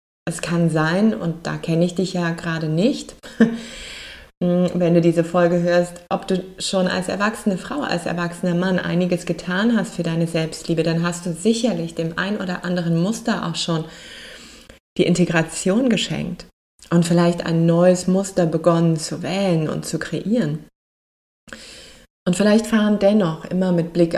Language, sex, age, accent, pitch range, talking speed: German, female, 20-39, German, 165-195 Hz, 155 wpm